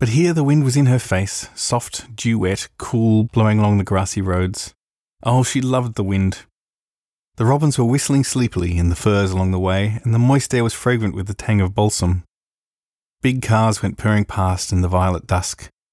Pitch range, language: 95-115 Hz, English